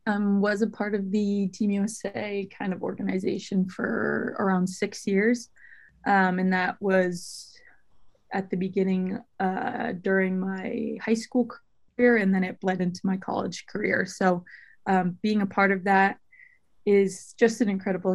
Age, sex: 20-39, female